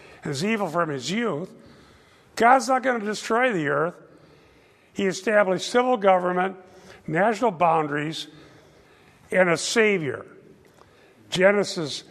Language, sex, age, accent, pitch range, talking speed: English, male, 50-69, American, 150-195 Hz, 110 wpm